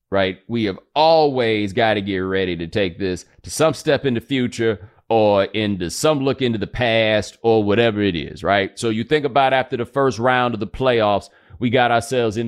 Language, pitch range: English, 100-150 Hz